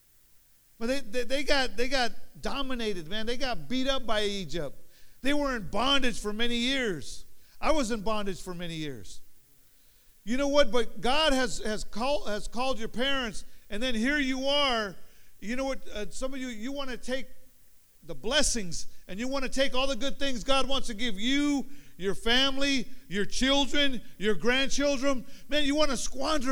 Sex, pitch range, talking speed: male, 190-260 Hz, 190 wpm